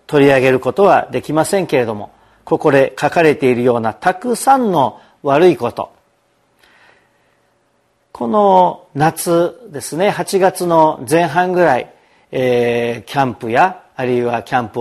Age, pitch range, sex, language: 40-59, 130-185 Hz, male, Japanese